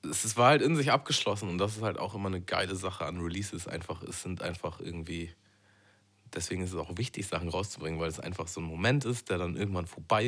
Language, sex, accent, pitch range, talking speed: German, male, German, 85-105 Hz, 235 wpm